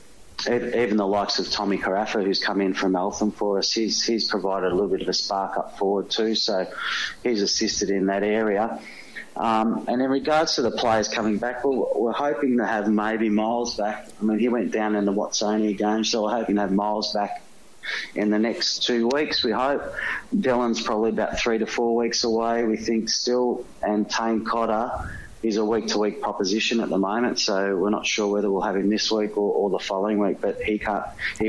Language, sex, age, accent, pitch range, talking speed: English, male, 30-49, Australian, 100-110 Hz, 210 wpm